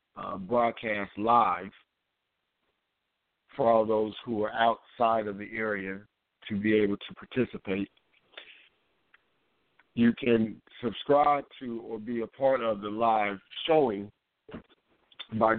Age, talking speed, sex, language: 60-79, 115 wpm, male, English